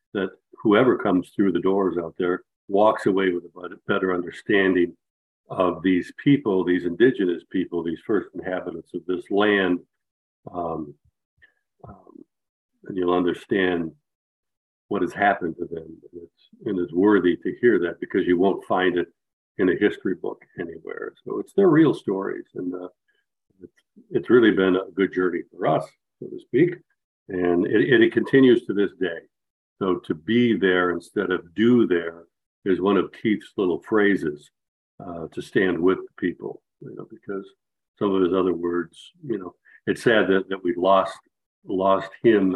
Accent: American